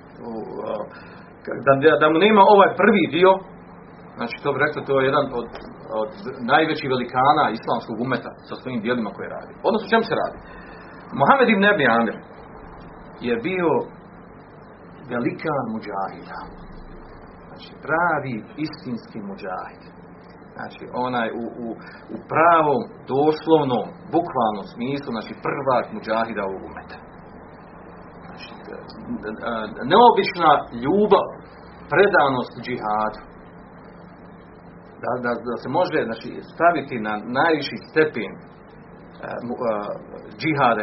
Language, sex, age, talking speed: Croatian, male, 40-59, 105 wpm